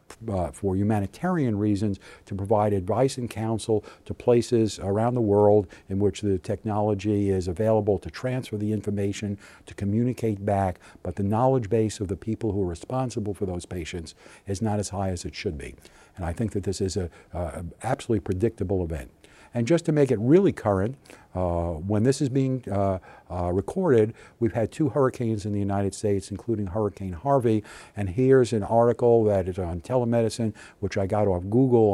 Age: 50-69